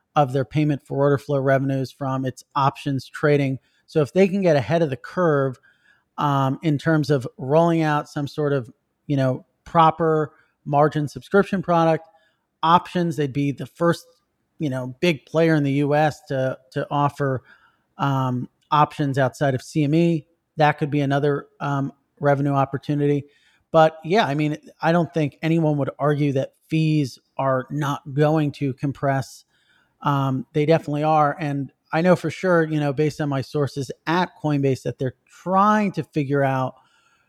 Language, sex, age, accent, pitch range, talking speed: English, male, 30-49, American, 135-160 Hz, 165 wpm